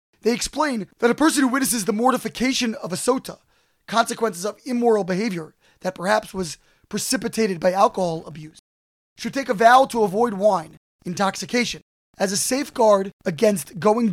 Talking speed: 155 wpm